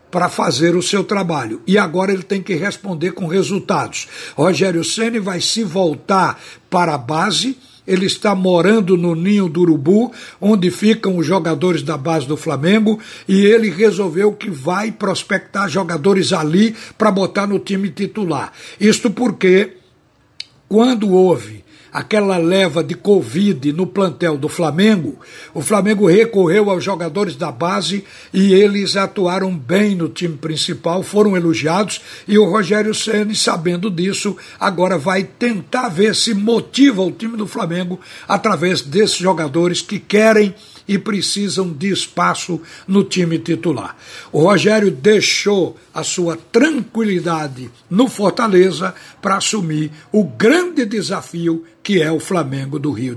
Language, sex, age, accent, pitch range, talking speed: Portuguese, male, 60-79, Brazilian, 175-210 Hz, 140 wpm